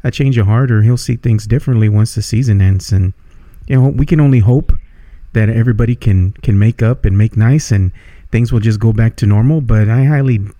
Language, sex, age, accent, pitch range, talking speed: English, male, 40-59, American, 100-130 Hz, 220 wpm